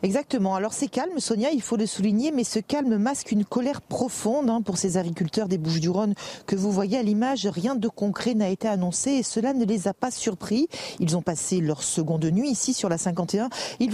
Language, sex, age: French, female, 40-59